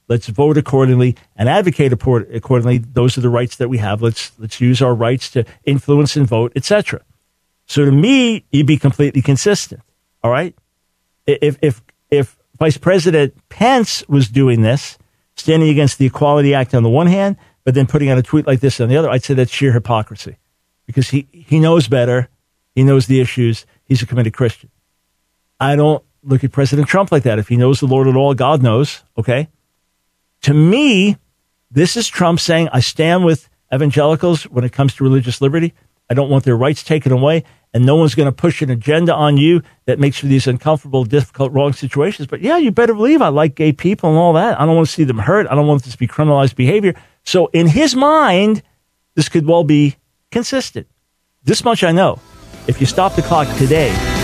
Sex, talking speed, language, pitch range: male, 205 wpm, English, 125-160 Hz